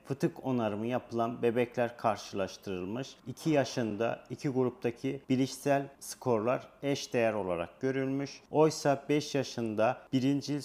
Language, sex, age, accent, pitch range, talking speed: Turkish, male, 40-59, native, 110-130 Hz, 105 wpm